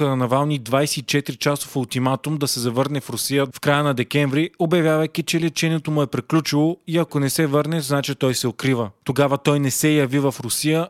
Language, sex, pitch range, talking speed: Bulgarian, male, 130-155 Hz, 200 wpm